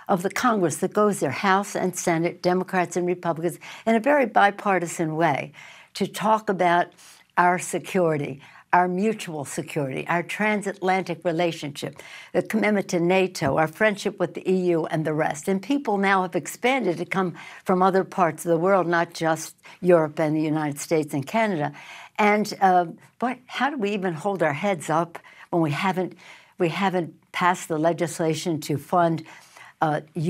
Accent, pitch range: American, 165-195 Hz